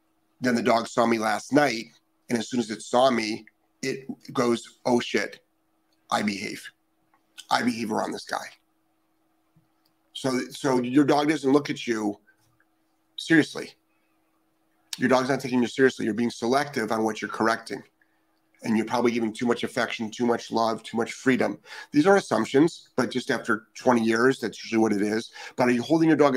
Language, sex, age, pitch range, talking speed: English, male, 30-49, 110-135 Hz, 180 wpm